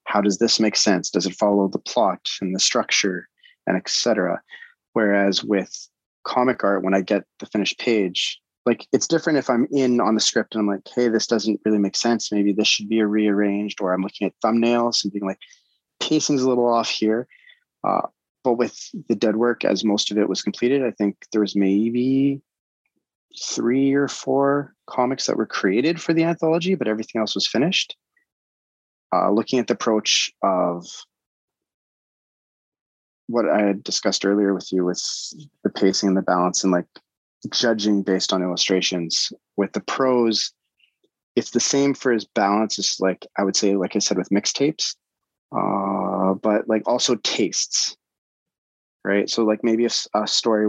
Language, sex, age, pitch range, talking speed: English, male, 30-49, 95-120 Hz, 180 wpm